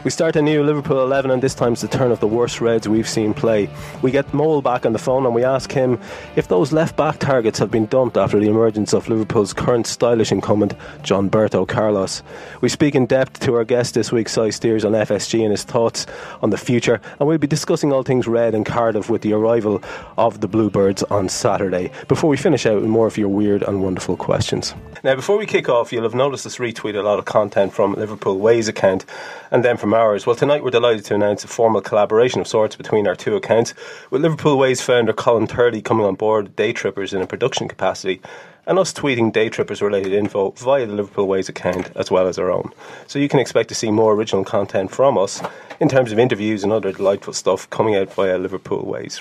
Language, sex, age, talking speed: English, male, 30-49, 230 wpm